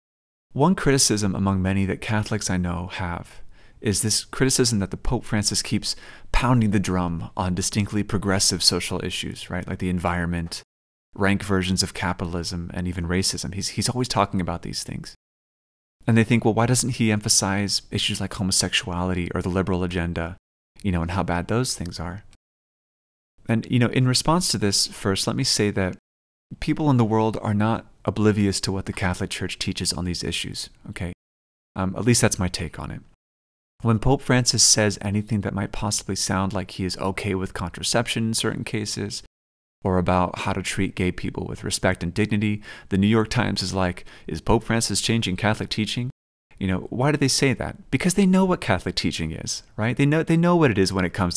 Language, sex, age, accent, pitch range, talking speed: English, male, 30-49, American, 90-110 Hz, 195 wpm